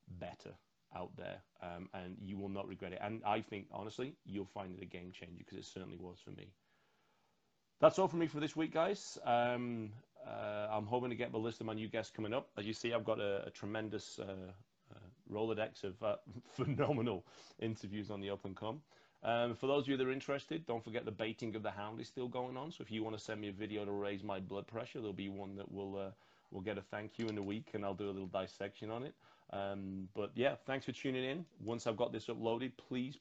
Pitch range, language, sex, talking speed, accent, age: 100-120 Hz, English, male, 245 wpm, British, 30-49